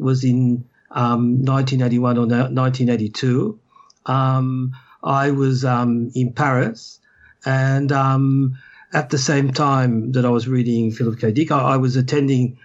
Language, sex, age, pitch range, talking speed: English, male, 50-69, 120-135 Hz, 135 wpm